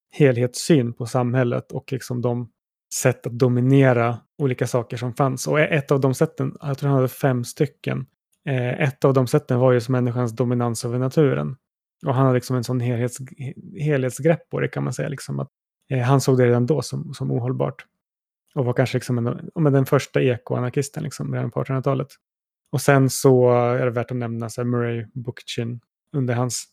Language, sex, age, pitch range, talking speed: Swedish, male, 30-49, 120-140 Hz, 195 wpm